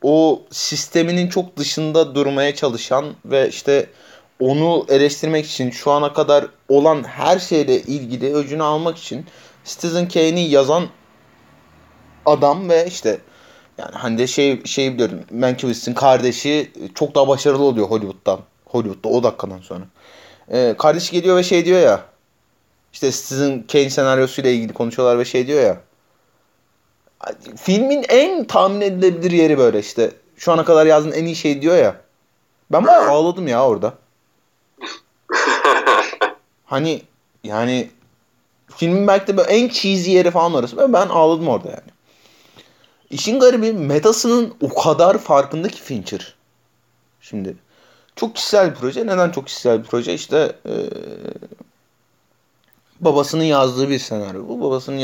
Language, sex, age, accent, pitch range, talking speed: Turkish, male, 30-49, native, 135-175 Hz, 130 wpm